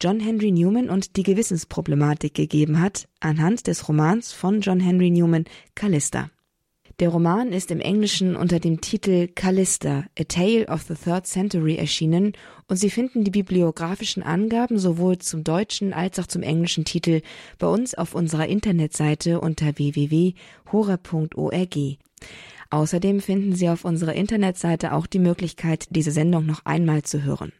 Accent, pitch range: German, 155-190 Hz